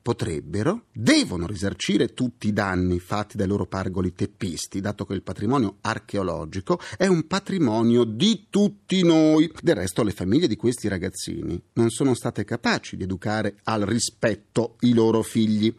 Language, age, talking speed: Italian, 40-59, 150 wpm